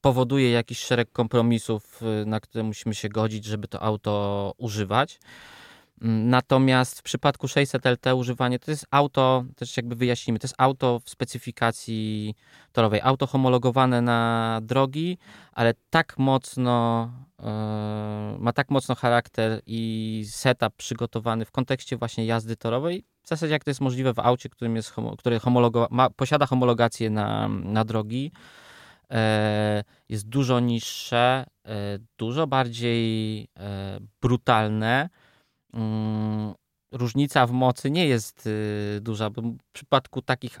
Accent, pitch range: native, 110-130 Hz